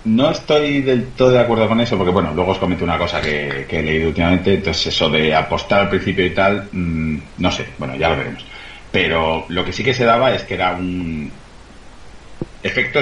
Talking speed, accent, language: 210 wpm, Spanish, Spanish